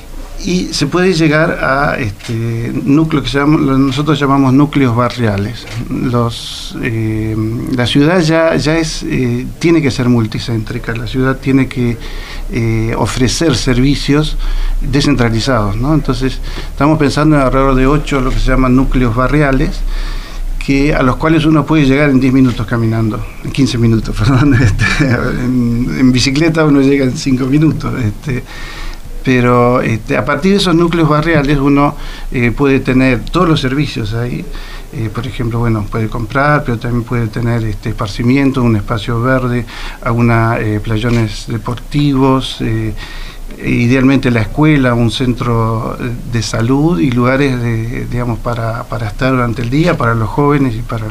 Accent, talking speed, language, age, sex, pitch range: Argentinian, 155 wpm, Spanish, 50-69, male, 115-145 Hz